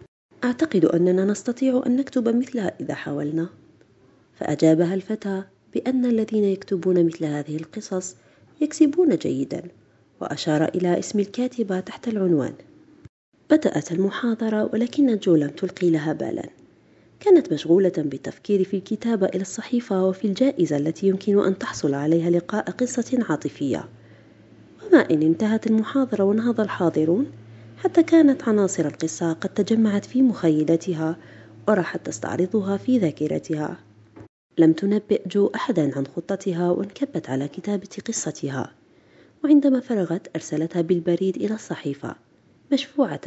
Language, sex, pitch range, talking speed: Arabic, female, 165-225 Hz, 115 wpm